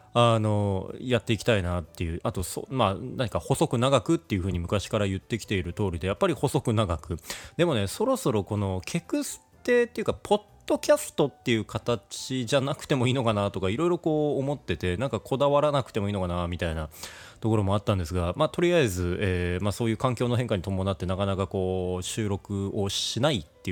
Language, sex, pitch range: Japanese, male, 90-140 Hz